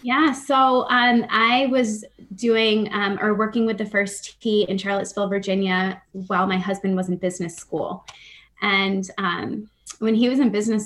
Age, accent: 20-39, American